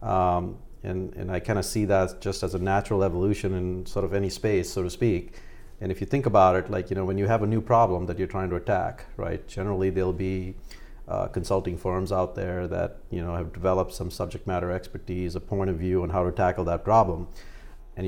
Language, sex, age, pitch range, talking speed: English, male, 50-69, 95-105 Hz, 230 wpm